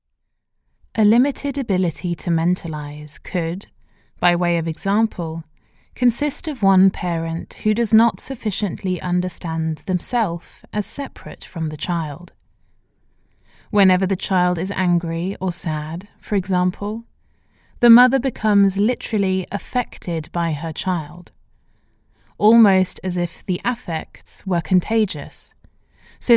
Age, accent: 20-39, British